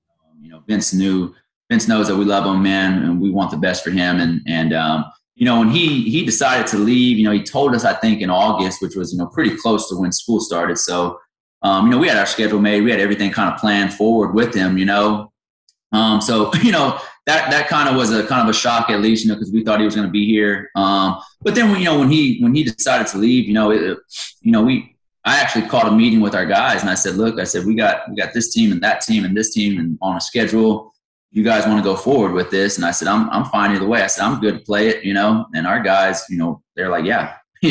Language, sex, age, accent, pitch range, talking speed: English, male, 20-39, American, 95-110 Hz, 280 wpm